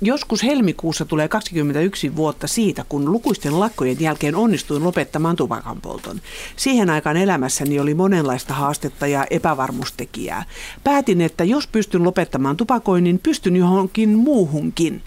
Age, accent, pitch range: 50-69, native, 150-200 Hz